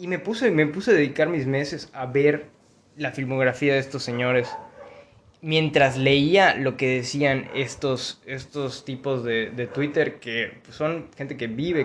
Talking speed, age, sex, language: 160 wpm, 20-39, male, Spanish